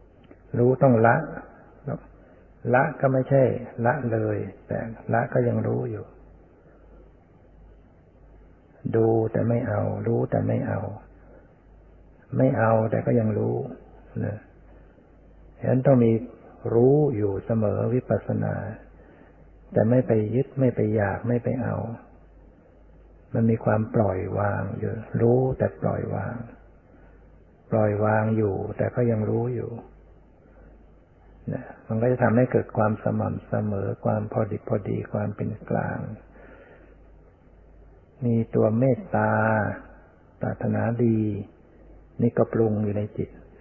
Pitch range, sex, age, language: 95-120 Hz, male, 60-79, Thai